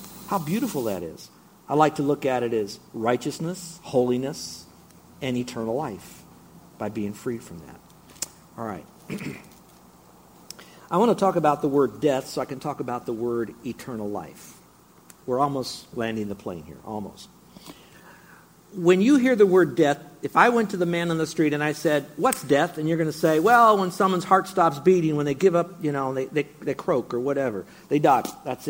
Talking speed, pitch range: 195 wpm, 130-175 Hz